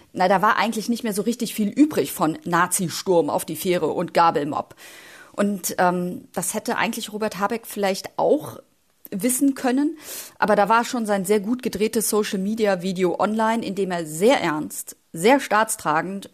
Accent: German